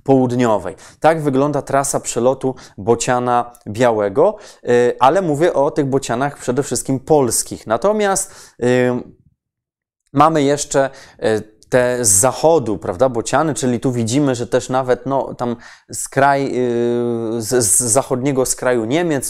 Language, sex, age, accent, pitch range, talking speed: Polish, male, 20-39, native, 120-140 Hz, 120 wpm